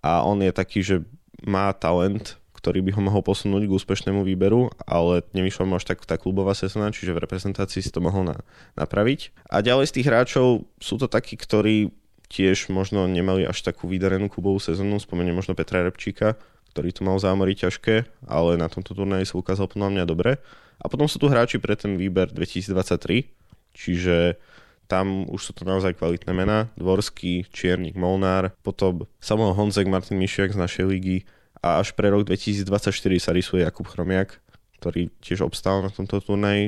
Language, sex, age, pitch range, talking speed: Slovak, male, 20-39, 90-100 Hz, 180 wpm